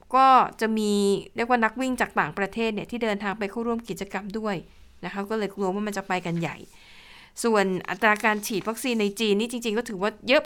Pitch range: 195-230 Hz